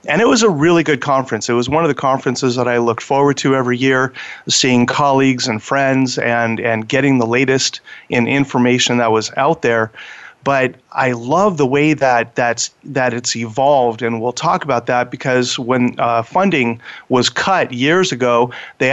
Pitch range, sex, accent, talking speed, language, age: 120-145 Hz, male, American, 185 wpm, English, 40-59